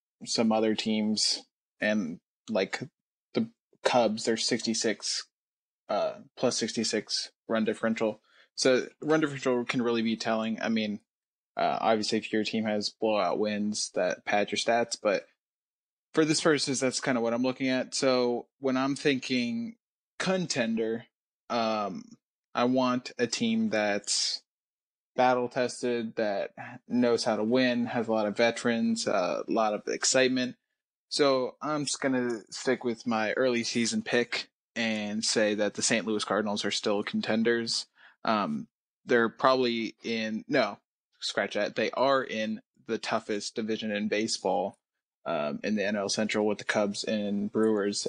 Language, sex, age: English, male, 20-39